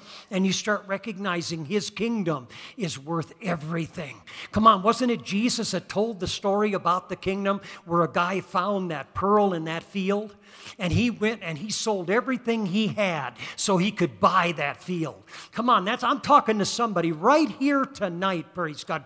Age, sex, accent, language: 50-69, male, American, English